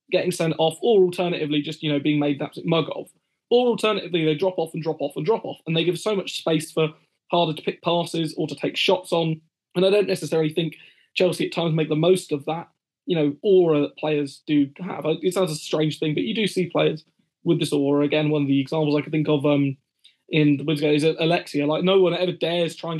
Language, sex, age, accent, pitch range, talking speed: English, male, 20-39, British, 155-180 Hz, 250 wpm